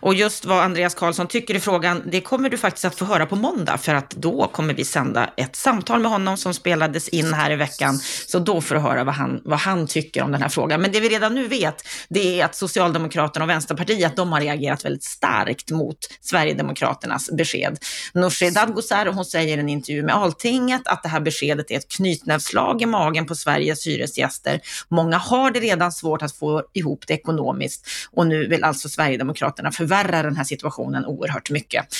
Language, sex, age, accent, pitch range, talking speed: Swedish, female, 30-49, native, 150-200 Hz, 210 wpm